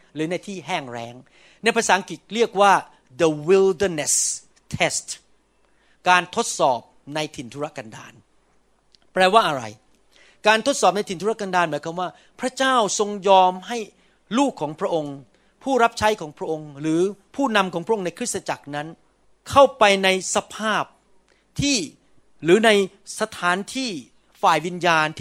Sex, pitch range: male, 165-220 Hz